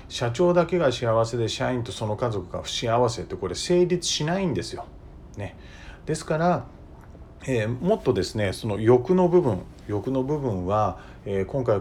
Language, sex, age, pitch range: Japanese, male, 40-59, 95-140 Hz